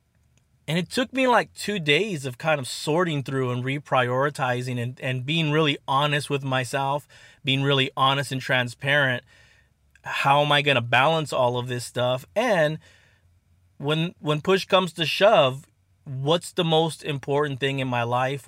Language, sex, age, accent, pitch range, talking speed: English, male, 30-49, American, 125-155 Hz, 165 wpm